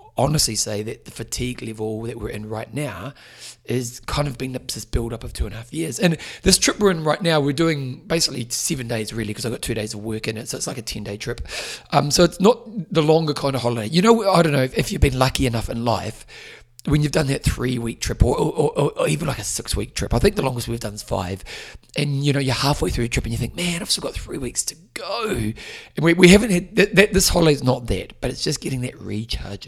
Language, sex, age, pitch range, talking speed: English, male, 30-49, 110-155 Hz, 265 wpm